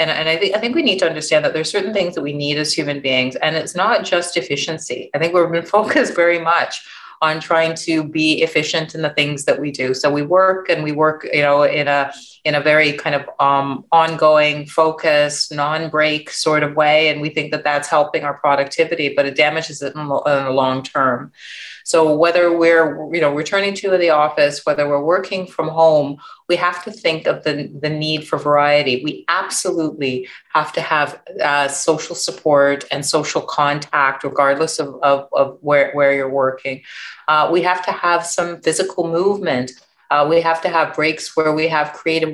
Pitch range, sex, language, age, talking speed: 145-165 Hz, female, English, 30-49, 200 wpm